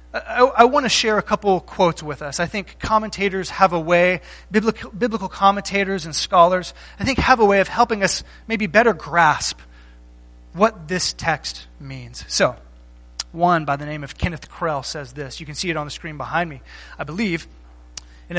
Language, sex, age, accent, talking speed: English, male, 30-49, American, 190 wpm